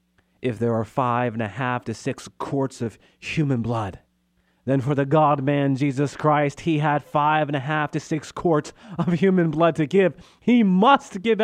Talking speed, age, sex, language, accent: 190 wpm, 40-59, male, English, American